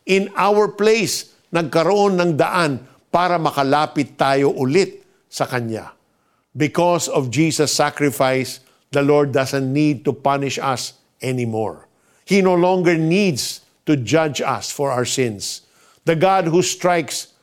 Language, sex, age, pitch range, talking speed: Filipino, male, 50-69, 130-170 Hz, 130 wpm